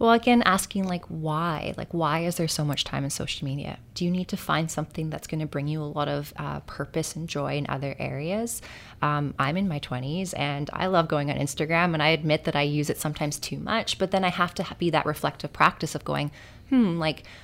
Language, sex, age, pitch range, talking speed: English, female, 20-39, 145-175 Hz, 240 wpm